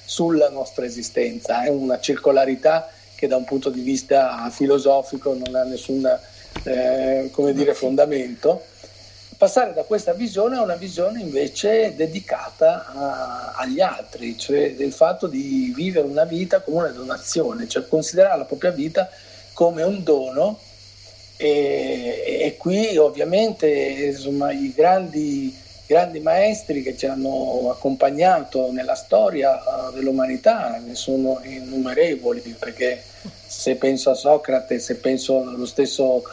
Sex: male